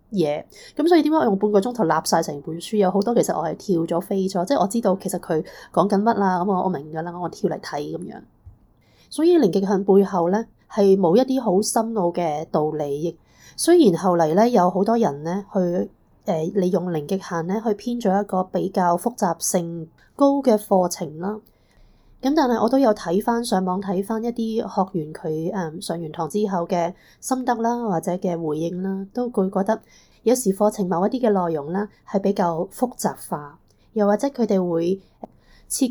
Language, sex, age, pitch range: Chinese, female, 20-39, 170-220 Hz